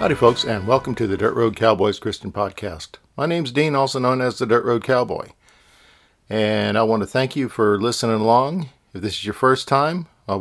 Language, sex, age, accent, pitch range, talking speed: English, male, 50-69, American, 110-140 Hz, 215 wpm